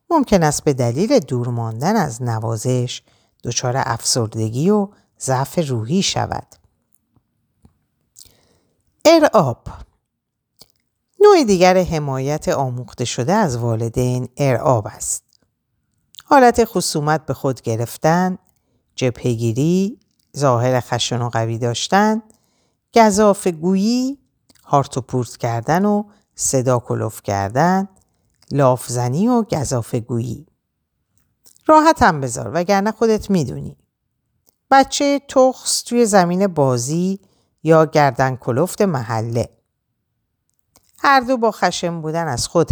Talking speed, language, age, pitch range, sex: 100 wpm, Persian, 50-69, 120-190 Hz, female